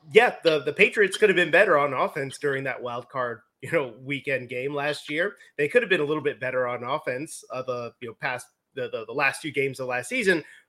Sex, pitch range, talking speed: male, 145-185 Hz, 245 wpm